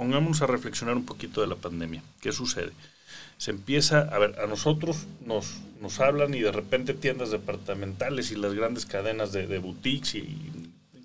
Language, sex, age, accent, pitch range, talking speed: Spanish, male, 40-59, Mexican, 105-145 Hz, 185 wpm